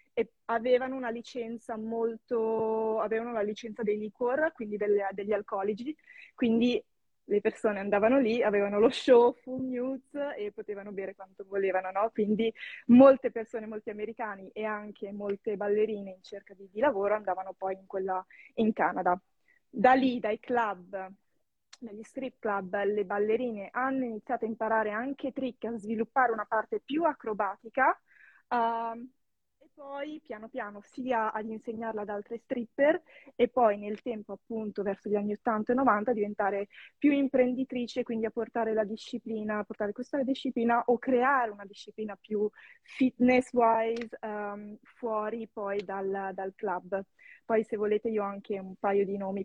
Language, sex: Italian, female